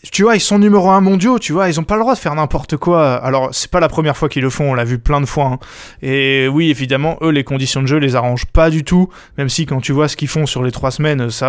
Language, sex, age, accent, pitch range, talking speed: French, male, 20-39, French, 130-160 Hz, 315 wpm